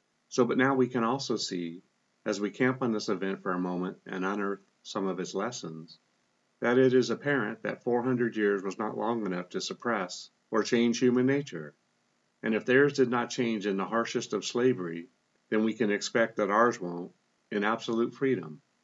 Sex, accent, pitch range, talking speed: male, American, 95-115 Hz, 190 wpm